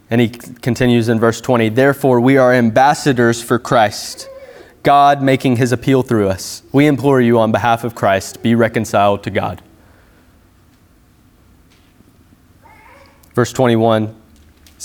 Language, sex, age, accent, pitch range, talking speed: English, male, 20-39, American, 100-125 Hz, 125 wpm